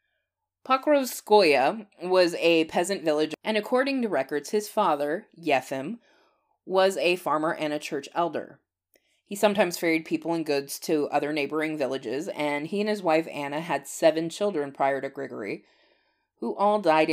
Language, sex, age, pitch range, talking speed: English, female, 20-39, 140-190 Hz, 155 wpm